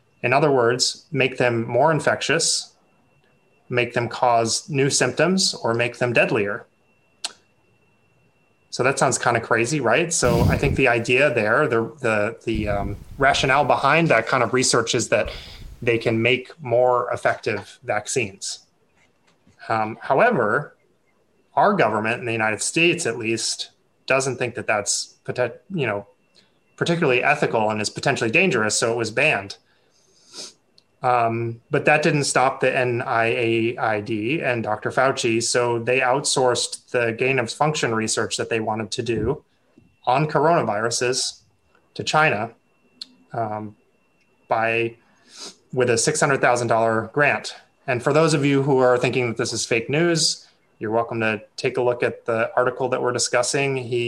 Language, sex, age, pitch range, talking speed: English, male, 30-49, 115-135 Hz, 145 wpm